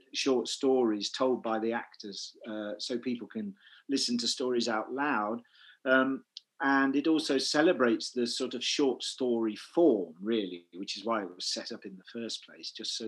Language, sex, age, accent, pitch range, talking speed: English, male, 40-59, British, 120-160 Hz, 185 wpm